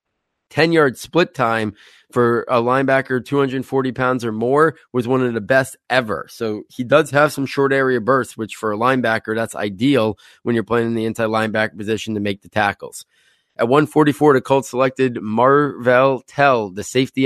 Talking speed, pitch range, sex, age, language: 180 wpm, 110-130 Hz, male, 20-39, English